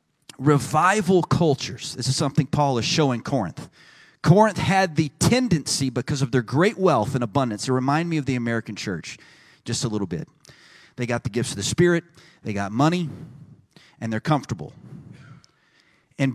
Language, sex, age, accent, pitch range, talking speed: English, male, 30-49, American, 135-175 Hz, 165 wpm